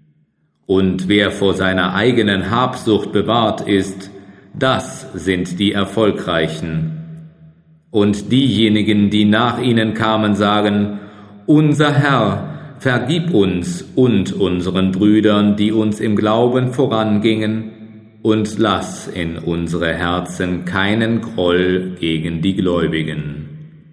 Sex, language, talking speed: male, German, 105 wpm